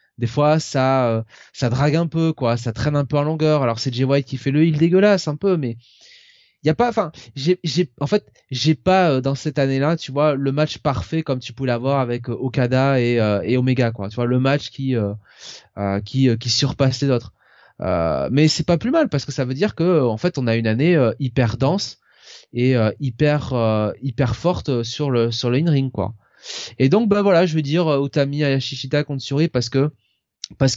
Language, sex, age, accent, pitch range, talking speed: French, male, 20-39, French, 120-150 Hz, 230 wpm